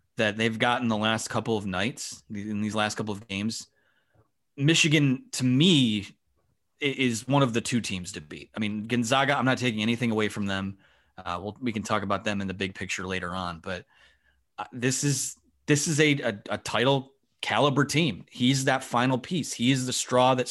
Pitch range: 110-135 Hz